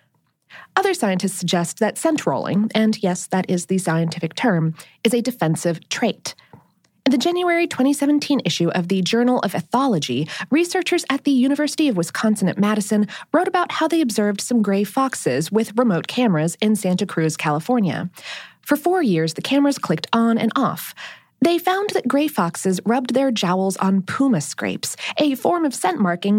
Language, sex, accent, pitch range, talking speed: English, female, American, 175-280 Hz, 165 wpm